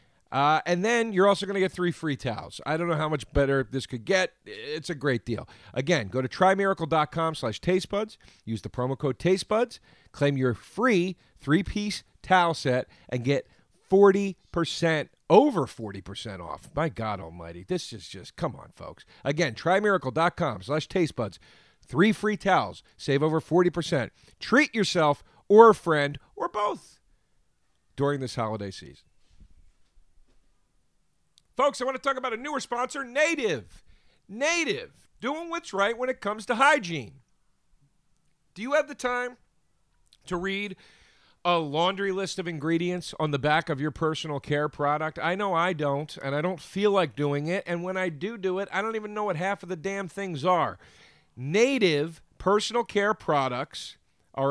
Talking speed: 165 wpm